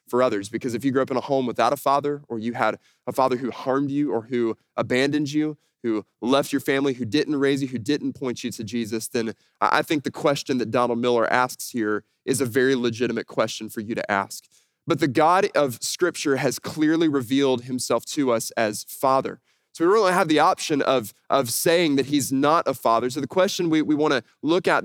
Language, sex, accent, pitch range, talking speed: English, male, American, 115-145 Hz, 225 wpm